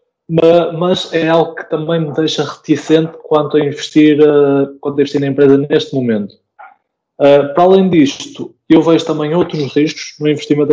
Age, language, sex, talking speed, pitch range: 20-39, Portuguese, male, 145 wpm, 135-155 Hz